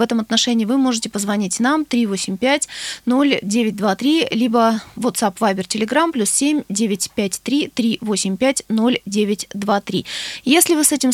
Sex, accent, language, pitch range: female, native, Russian, 215-270 Hz